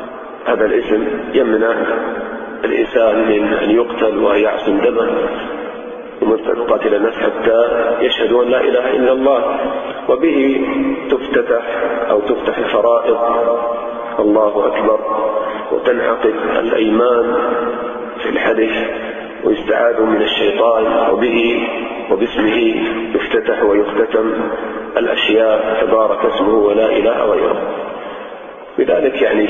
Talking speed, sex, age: 85 wpm, male, 40-59